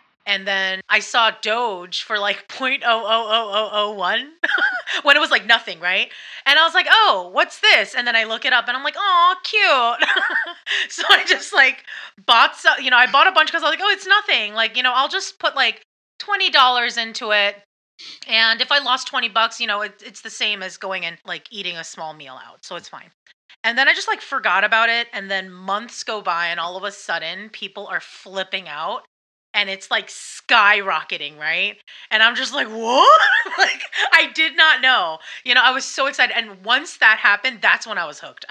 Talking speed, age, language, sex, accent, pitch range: 210 wpm, 30-49, English, female, American, 195-260 Hz